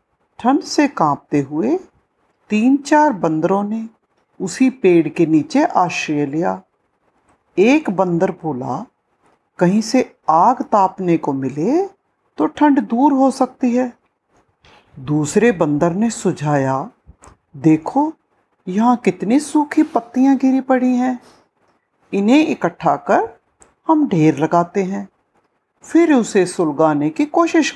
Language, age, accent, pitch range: Hindi, 50-69, native, 165-275 Hz